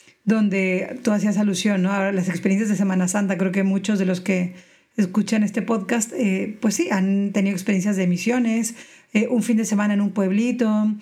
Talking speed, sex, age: 195 wpm, female, 50-69